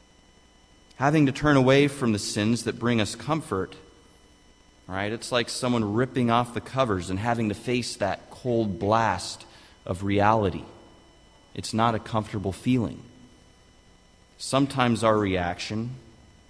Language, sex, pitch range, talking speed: English, male, 95-120 Hz, 130 wpm